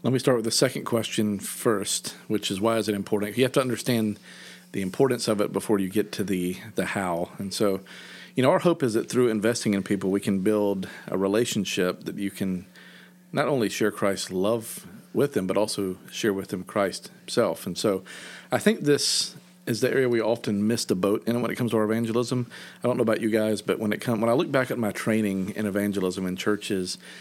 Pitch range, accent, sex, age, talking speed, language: 100-120 Hz, American, male, 40-59, 225 wpm, English